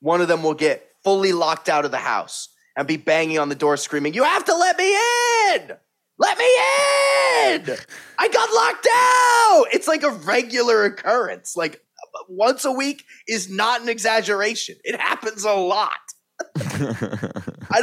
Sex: male